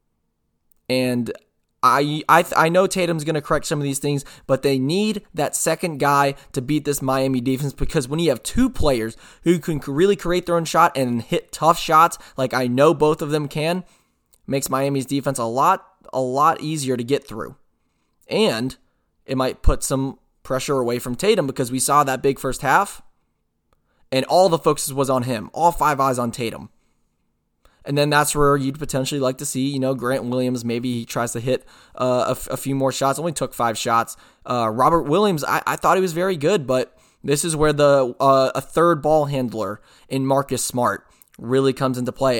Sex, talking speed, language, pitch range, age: male, 205 wpm, English, 125-150 Hz, 20-39